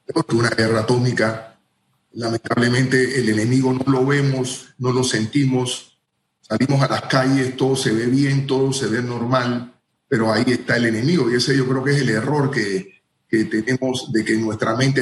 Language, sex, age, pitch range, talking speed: Spanish, male, 40-59, 115-145 Hz, 180 wpm